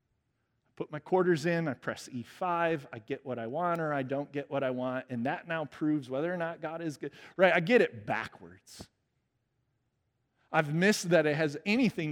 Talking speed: 200 wpm